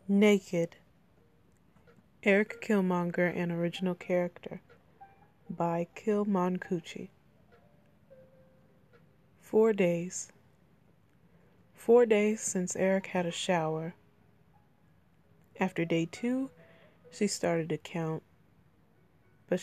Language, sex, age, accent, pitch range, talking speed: English, female, 20-39, American, 160-185 Hz, 80 wpm